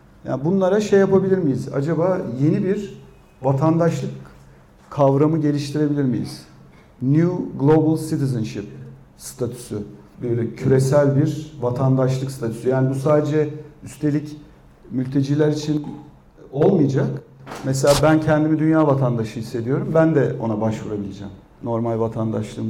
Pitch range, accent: 125-160 Hz, native